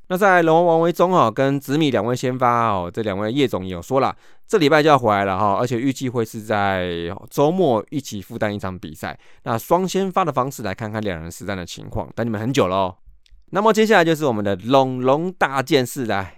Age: 20-39